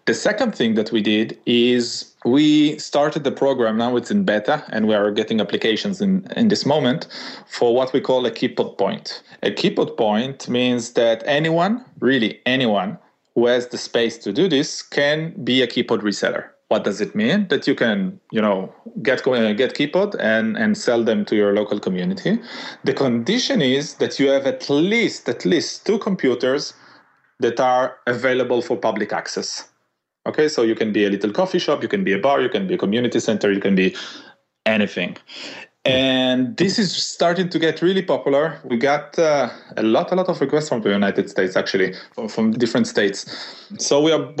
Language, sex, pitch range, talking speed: English, male, 115-160 Hz, 195 wpm